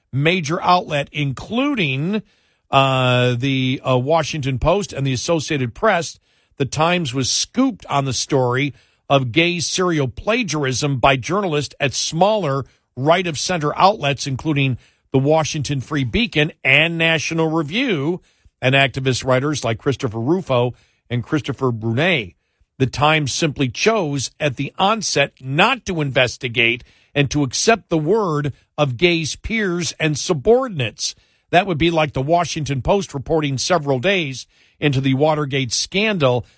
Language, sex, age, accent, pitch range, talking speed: English, male, 50-69, American, 130-165 Hz, 130 wpm